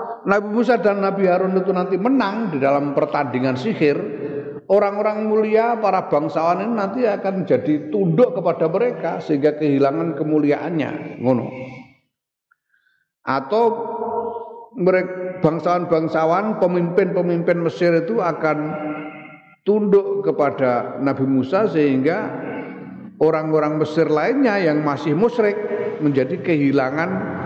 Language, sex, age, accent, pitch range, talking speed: Indonesian, male, 50-69, native, 135-200 Hz, 100 wpm